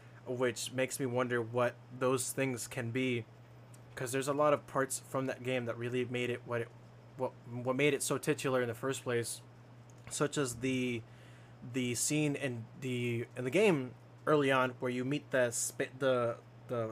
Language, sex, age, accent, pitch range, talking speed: English, male, 20-39, American, 120-130 Hz, 185 wpm